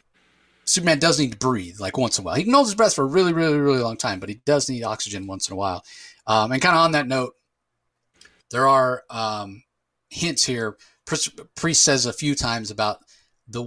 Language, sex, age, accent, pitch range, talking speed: English, male, 30-49, American, 105-130 Hz, 225 wpm